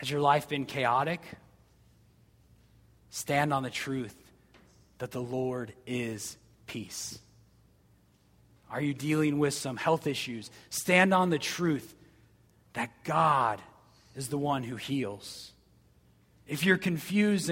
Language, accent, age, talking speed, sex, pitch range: English, American, 30-49, 120 wpm, male, 115-175 Hz